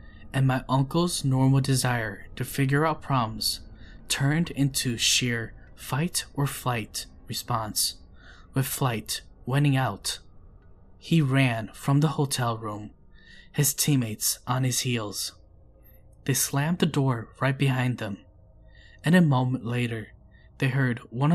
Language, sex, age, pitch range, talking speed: English, male, 10-29, 105-135 Hz, 120 wpm